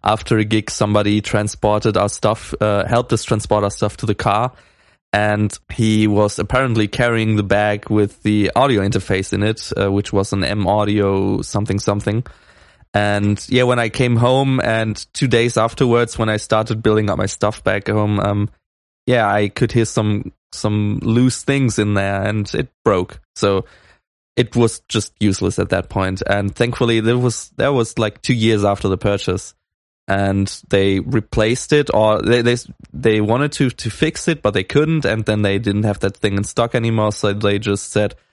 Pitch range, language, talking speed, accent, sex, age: 100-115 Hz, English, 185 wpm, German, male, 20-39